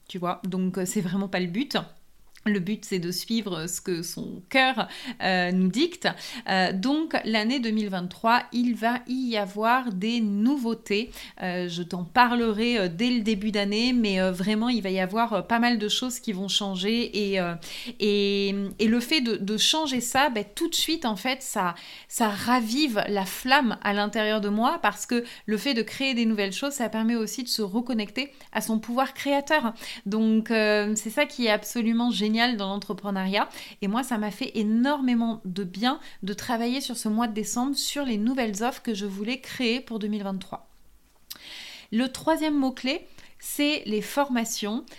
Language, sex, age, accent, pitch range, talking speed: French, female, 30-49, French, 200-245 Hz, 180 wpm